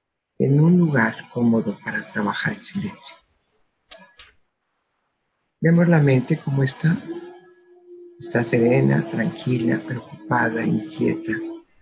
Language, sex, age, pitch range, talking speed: Spanish, male, 50-69, 125-180 Hz, 90 wpm